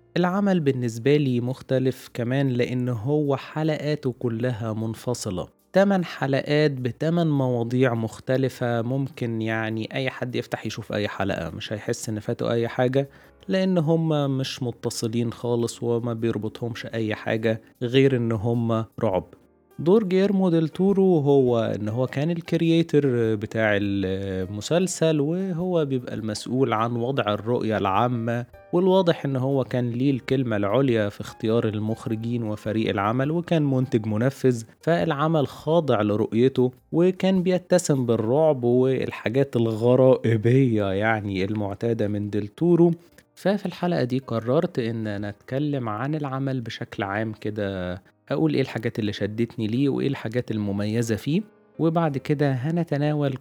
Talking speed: 125 wpm